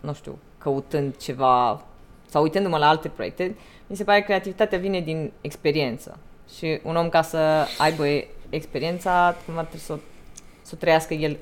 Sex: female